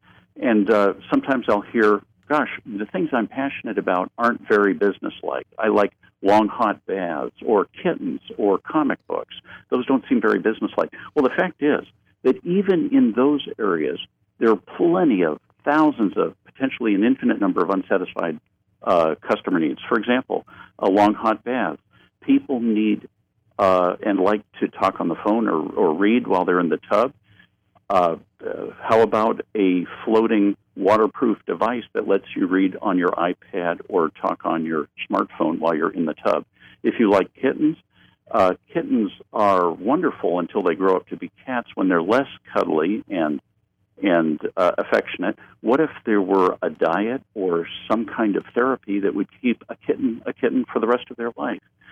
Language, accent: English, American